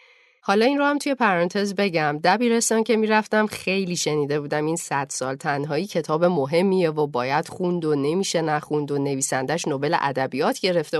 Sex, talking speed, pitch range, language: female, 165 wpm, 150-210 Hz, Persian